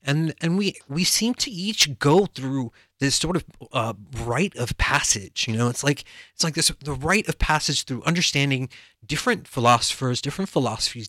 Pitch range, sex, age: 120-165 Hz, male, 30-49